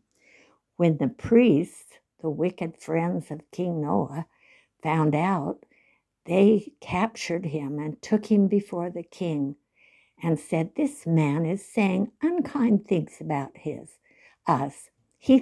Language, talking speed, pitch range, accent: English, 125 wpm, 165-220 Hz, American